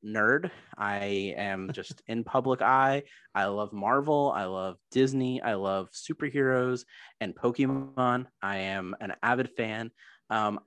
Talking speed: 135 wpm